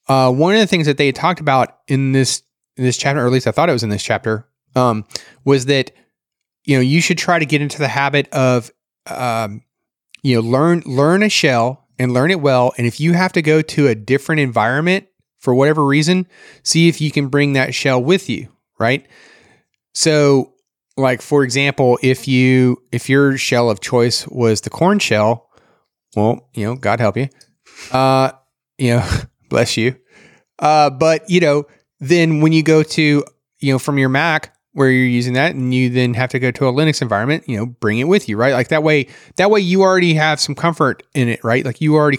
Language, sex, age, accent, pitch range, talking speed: English, male, 30-49, American, 125-155 Hz, 215 wpm